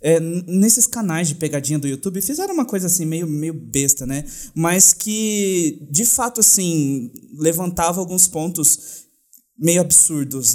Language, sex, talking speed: Portuguese, male, 140 wpm